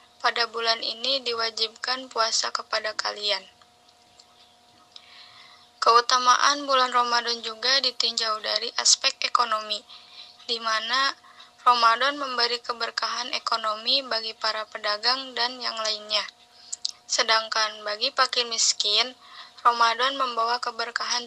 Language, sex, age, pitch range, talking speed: Indonesian, female, 10-29, 225-255 Hz, 95 wpm